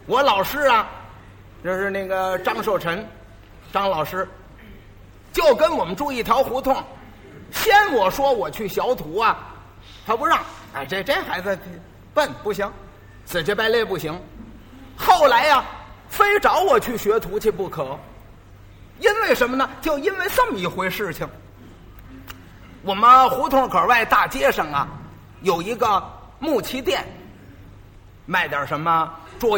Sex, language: male, Chinese